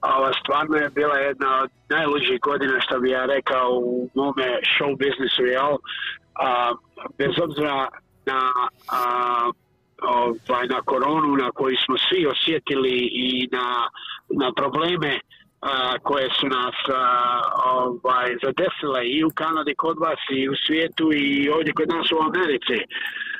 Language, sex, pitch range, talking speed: Croatian, male, 130-155 Hz, 120 wpm